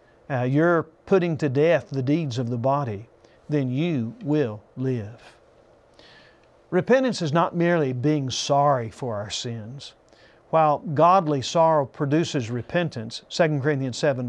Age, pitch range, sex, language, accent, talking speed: 50-69, 135-175 Hz, male, English, American, 130 wpm